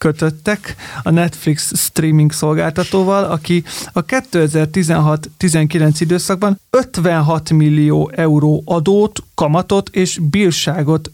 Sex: male